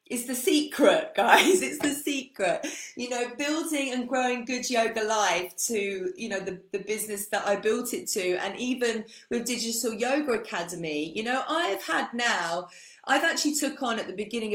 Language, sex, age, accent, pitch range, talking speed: English, female, 30-49, British, 180-240 Hz, 180 wpm